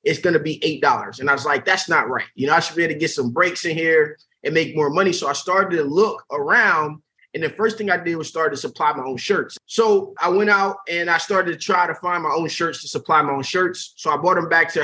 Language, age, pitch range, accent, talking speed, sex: English, 20-39, 140-190 Hz, American, 290 wpm, male